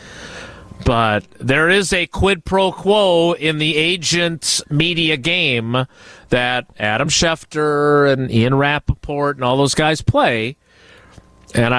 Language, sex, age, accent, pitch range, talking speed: English, male, 40-59, American, 130-185 Hz, 120 wpm